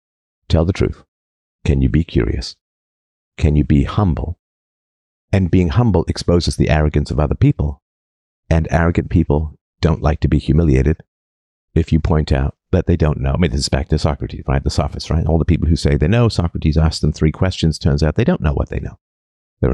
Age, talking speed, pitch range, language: 50-69, 205 wpm, 70-90 Hz, English